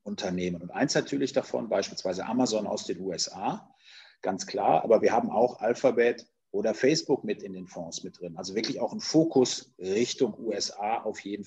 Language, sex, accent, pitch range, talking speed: German, male, German, 95-140 Hz, 180 wpm